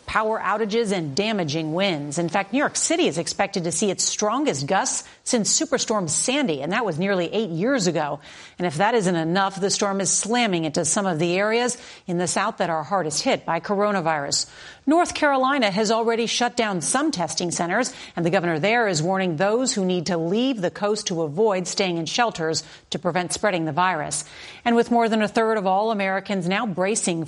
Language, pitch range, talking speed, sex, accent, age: English, 175-230 Hz, 205 wpm, female, American, 40-59